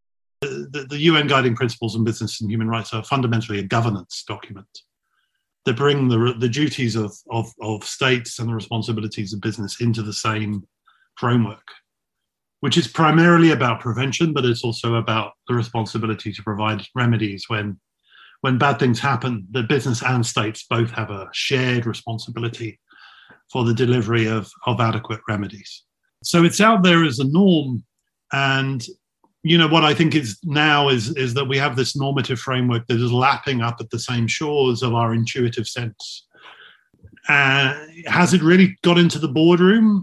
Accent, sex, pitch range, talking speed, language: British, male, 115-145 Hz, 165 wpm, English